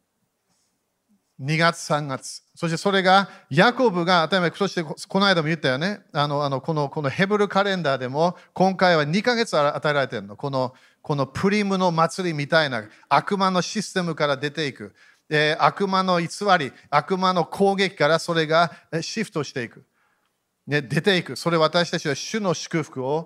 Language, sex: Japanese, male